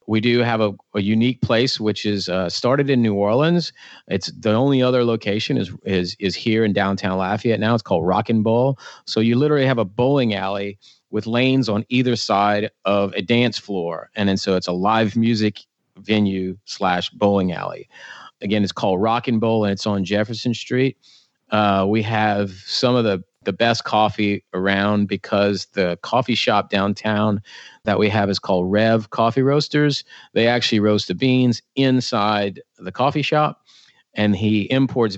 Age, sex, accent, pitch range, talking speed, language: 40-59, male, American, 100-120 Hz, 180 wpm, English